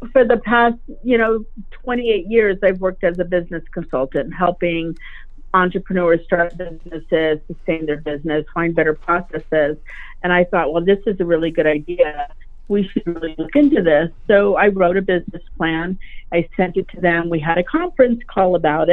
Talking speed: 180 wpm